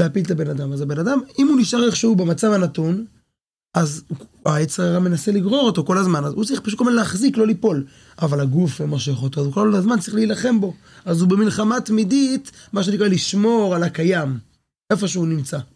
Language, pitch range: Hebrew, 145-200 Hz